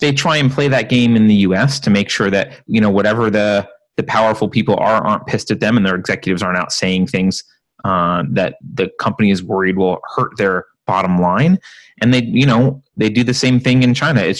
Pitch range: 95-130 Hz